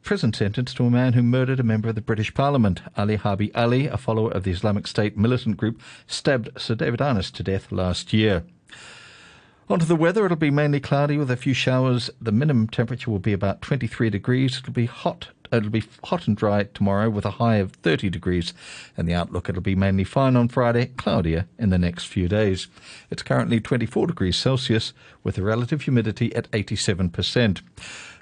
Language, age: English, 50-69